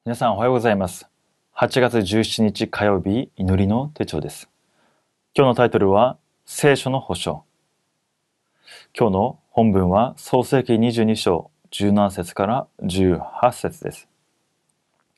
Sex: male